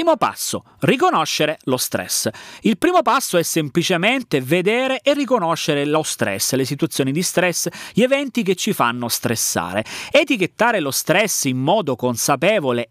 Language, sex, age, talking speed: Italian, male, 30-49, 145 wpm